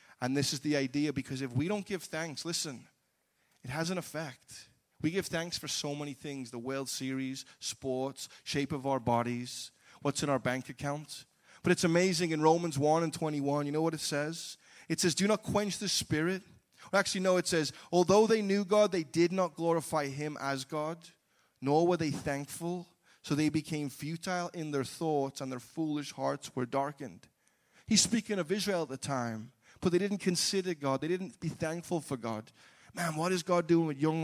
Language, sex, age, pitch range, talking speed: English, male, 20-39, 140-180 Hz, 200 wpm